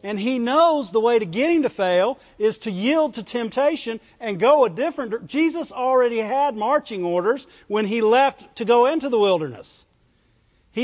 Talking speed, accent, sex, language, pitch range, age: 185 wpm, American, male, English, 180-255 Hz, 50-69